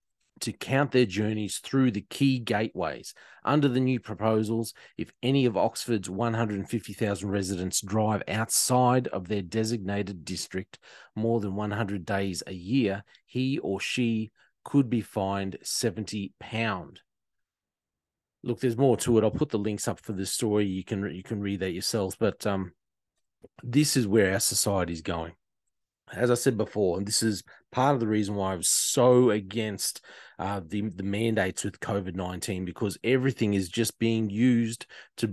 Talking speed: 165 wpm